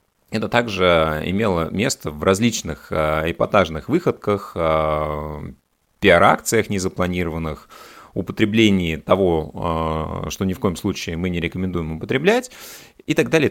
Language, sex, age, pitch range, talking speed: Russian, male, 30-49, 85-110 Hz, 120 wpm